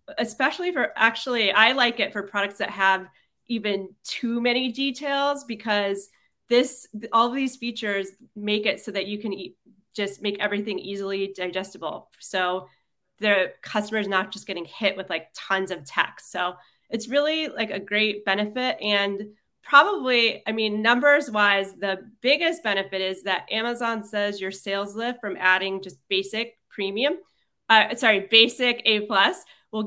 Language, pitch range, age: English, 195-230 Hz, 30-49